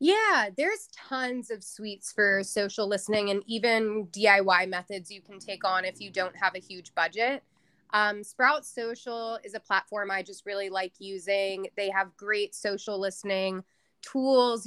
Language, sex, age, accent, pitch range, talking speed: English, female, 20-39, American, 195-230 Hz, 165 wpm